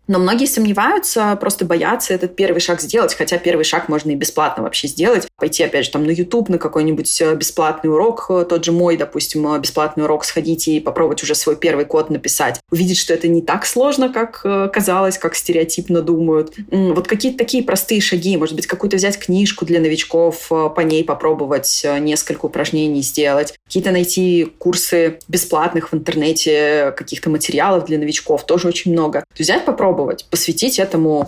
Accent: native